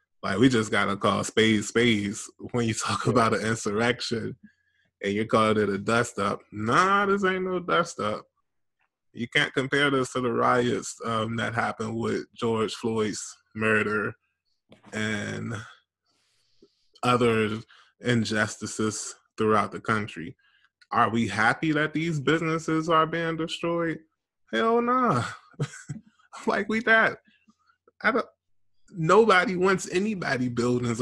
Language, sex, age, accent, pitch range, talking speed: English, male, 20-39, American, 110-160 Hz, 125 wpm